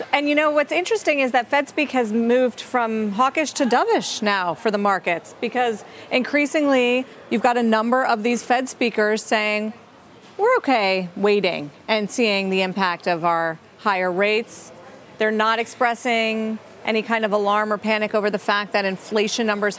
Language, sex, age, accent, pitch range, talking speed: English, female, 40-59, American, 195-230 Hz, 165 wpm